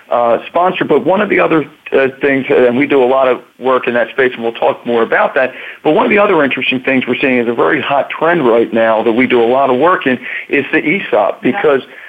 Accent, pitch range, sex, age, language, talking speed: American, 120-140 Hz, male, 50-69, English, 270 wpm